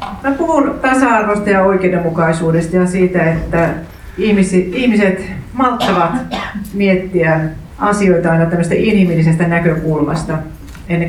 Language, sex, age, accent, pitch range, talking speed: Finnish, female, 40-59, native, 160-190 Hz, 95 wpm